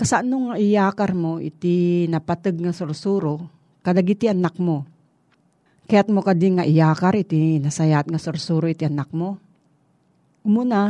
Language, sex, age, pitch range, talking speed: Filipino, female, 40-59, 155-205 Hz, 130 wpm